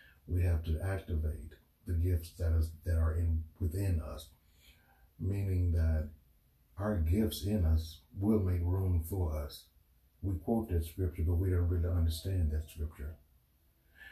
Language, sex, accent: English, male, American